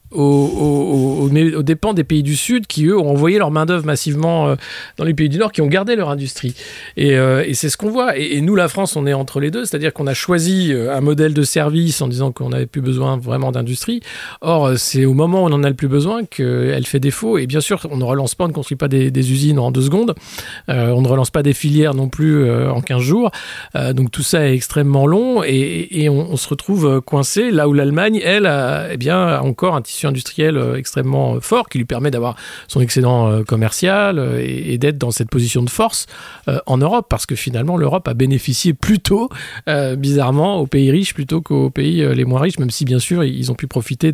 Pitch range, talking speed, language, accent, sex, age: 130-160 Hz, 235 wpm, French, French, male, 40-59